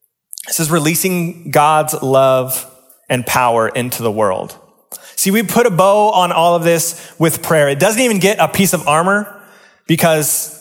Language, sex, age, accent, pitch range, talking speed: English, male, 20-39, American, 125-180 Hz, 170 wpm